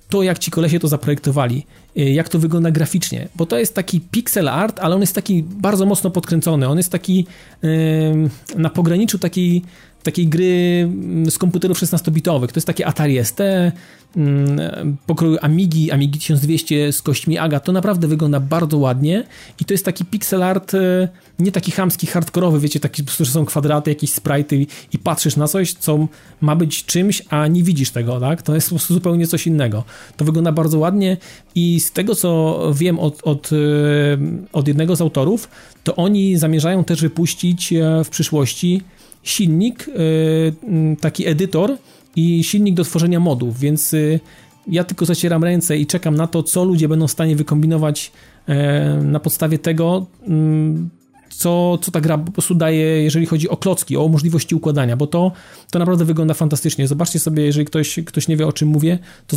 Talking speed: 170 wpm